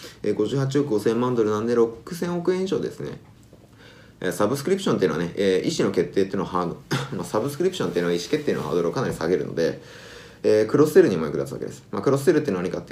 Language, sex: Japanese, male